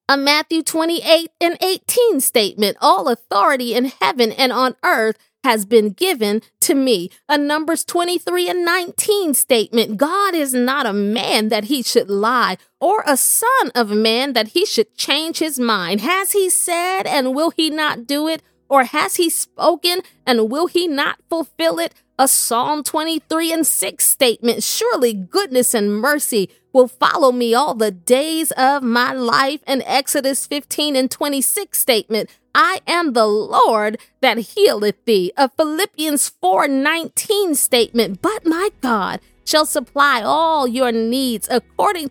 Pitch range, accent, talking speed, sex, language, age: 235-330 Hz, American, 155 wpm, female, English, 30-49